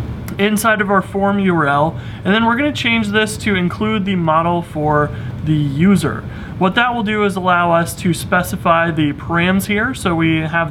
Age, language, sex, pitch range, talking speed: 30-49, English, male, 150-190 Hz, 185 wpm